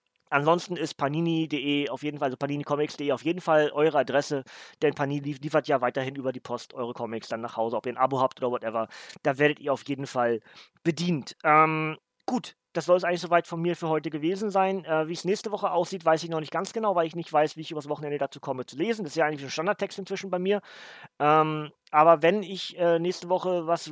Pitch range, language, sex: 150-180 Hz, German, male